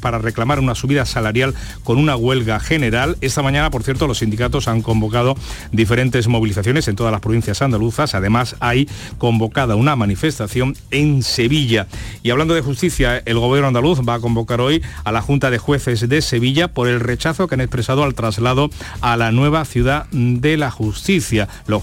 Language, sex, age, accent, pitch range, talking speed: Spanish, male, 40-59, Spanish, 110-135 Hz, 180 wpm